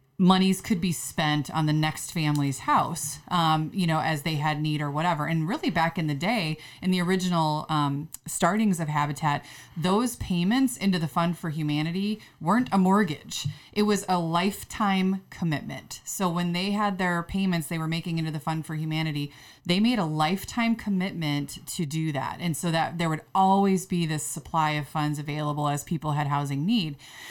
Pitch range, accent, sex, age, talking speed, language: 155-195 Hz, American, female, 20-39, 185 wpm, English